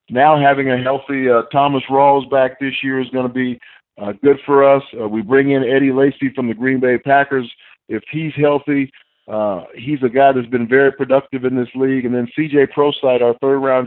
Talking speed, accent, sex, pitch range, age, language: 210 wpm, American, male, 120-135 Hz, 50-69, English